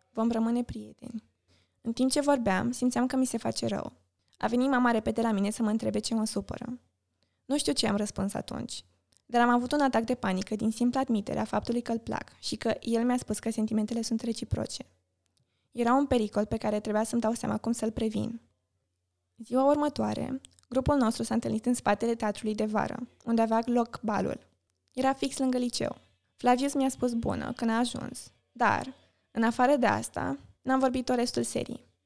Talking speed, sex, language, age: 190 wpm, female, Romanian, 20-39